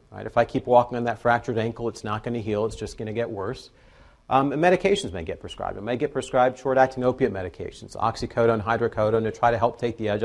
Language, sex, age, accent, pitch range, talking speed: English, male, 40-59, American, 110-140 Hz, 245 wpm